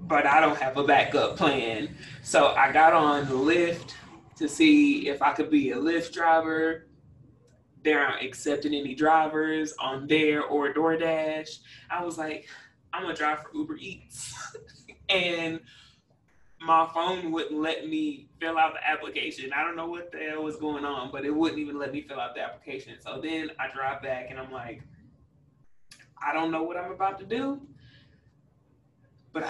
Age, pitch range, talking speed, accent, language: 20-39, 140-165 Hz, 175 wpm, American, English